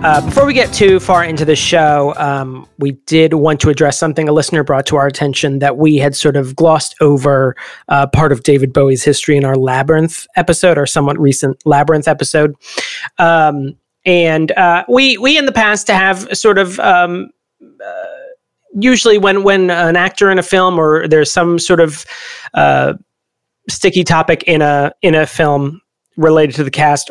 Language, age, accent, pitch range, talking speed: English, 30-49, American, 145-180 Hz, 180 wpm